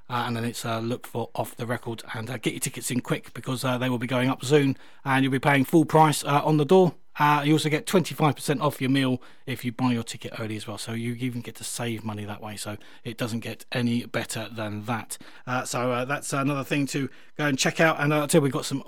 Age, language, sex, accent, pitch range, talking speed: 30-49, English, male, British, 125-150 Hz, 280 wpm